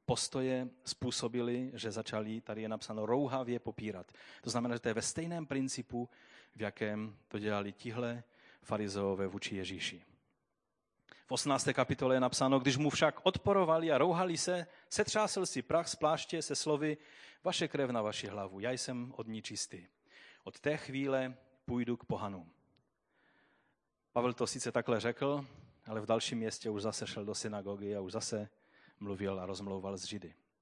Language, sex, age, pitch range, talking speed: Czech, male, 30-49, 110-155 Hz, 160 wpm